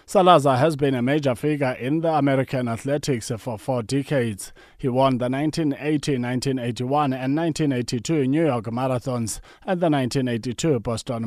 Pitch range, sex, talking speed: 125-150 Hz, male, 145 wpm